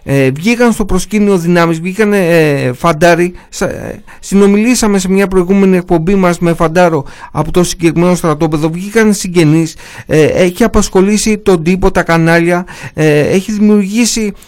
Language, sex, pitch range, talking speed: Greek, male, 165-210 Hz, 135 wpm